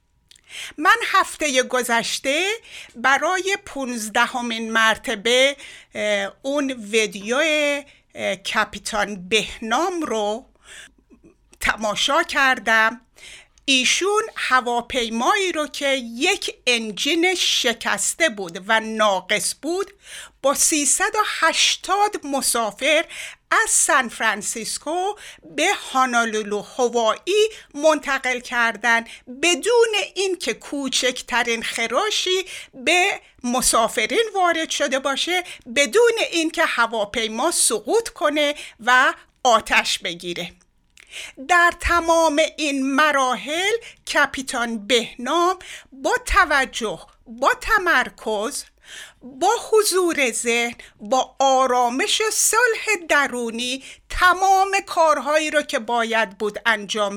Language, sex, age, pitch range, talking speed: Persian, female, 60-79, 235-345 Hz, 80 wpm